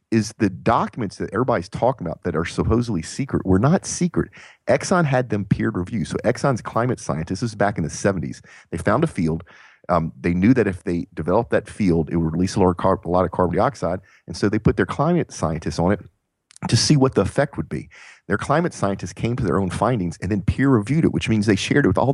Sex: male